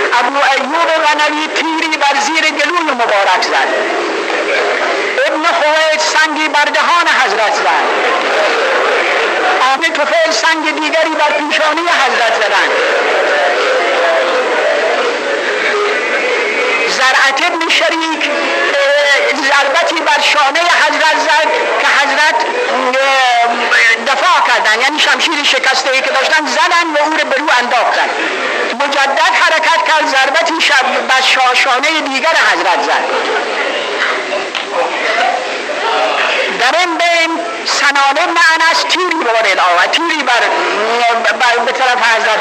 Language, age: Persian, 50-69